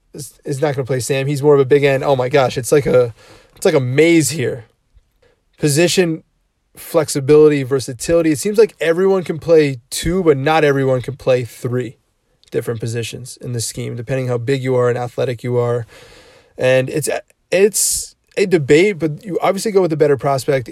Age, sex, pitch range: 20-39, male, 130-170 Hz